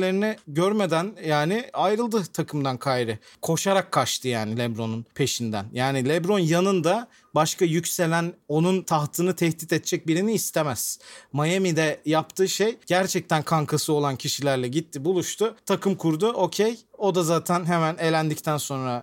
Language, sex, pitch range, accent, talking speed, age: Turkish, male, 150-185 Hz, native, 125 wpm, 40-59